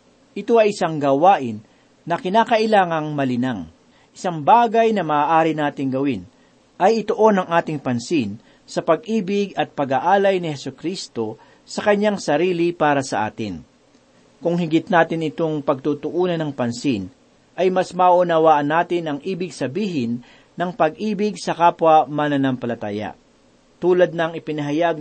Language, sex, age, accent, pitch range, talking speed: Filipino, male, 40-59, native, 145-195 Hz, 130 wpm